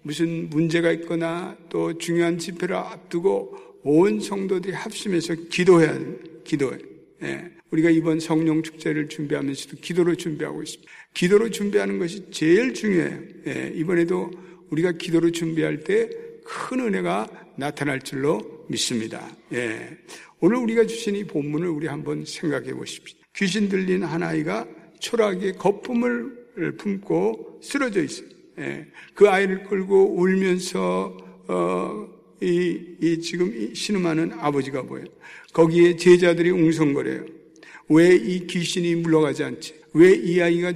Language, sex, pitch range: Korean, male, 160-195 Hz